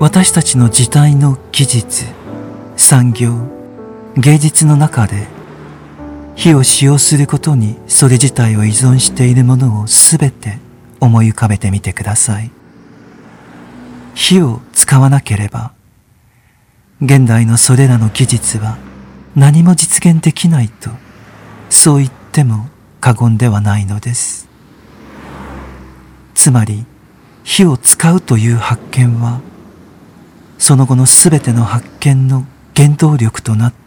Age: 40-59